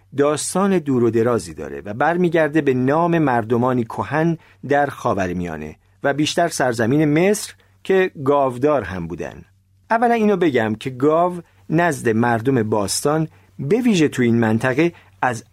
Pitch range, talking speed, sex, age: 110-160 Hz, 135 wpm, male, 40-59